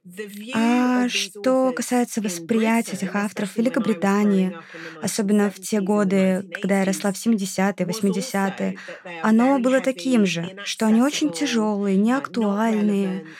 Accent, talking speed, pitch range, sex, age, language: native, 115 wpm, 195-235 Hz, female, 20-39, Russian